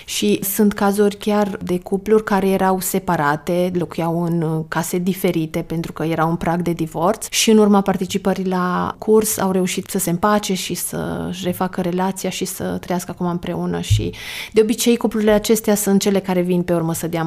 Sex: female